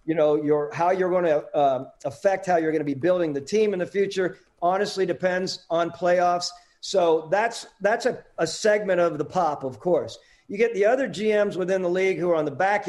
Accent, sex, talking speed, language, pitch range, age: American, male, 225 wpm, English, 170-205 Hz, 50-69